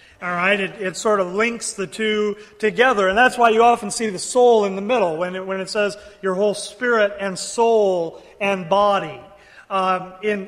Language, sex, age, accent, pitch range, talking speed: English, male, 30-49, American, 195-235 Hz, 185 wpm